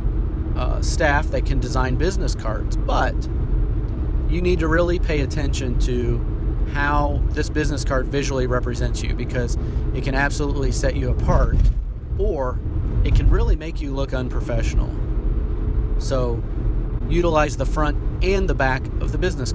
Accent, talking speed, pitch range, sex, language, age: American, 145 wpm, 90-135 Hz, male, English, 30-49